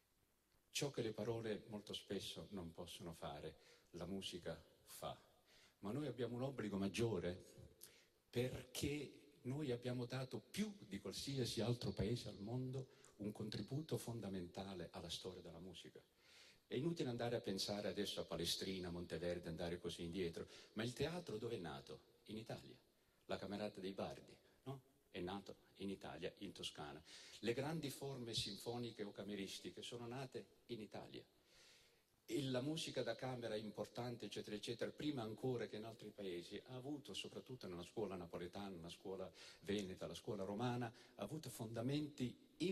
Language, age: Italian, 50-69